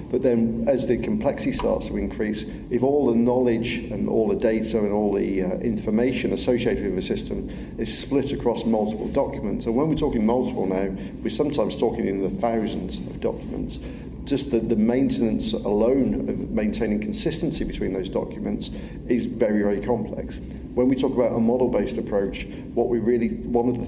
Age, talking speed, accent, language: 50-69, 180 wpm, British, Dutch